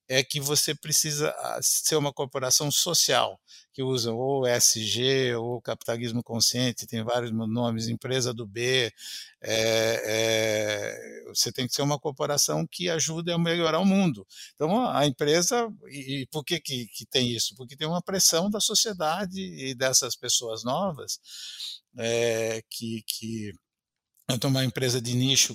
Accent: Brazilian